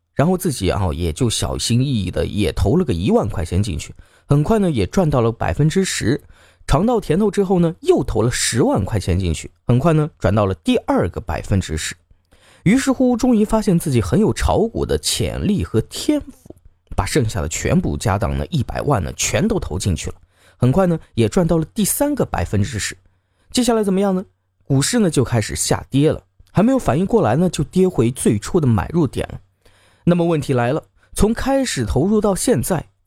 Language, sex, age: Chinese, male, 20-39